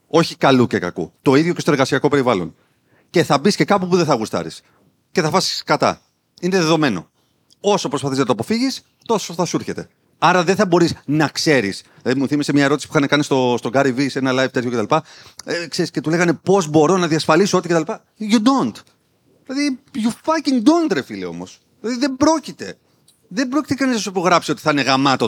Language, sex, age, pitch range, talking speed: Greek, male, 40-59, 135-195 Hz, 210 wpm